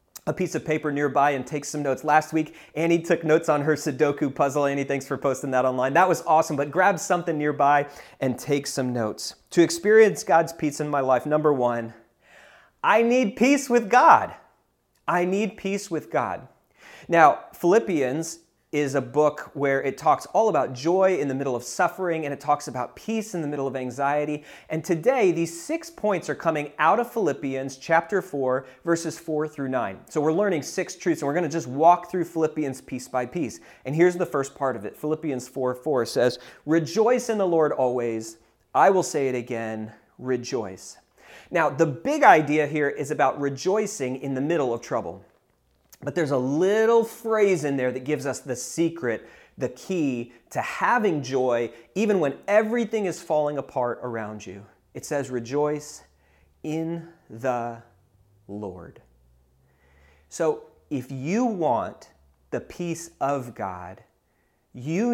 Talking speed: 170 wpm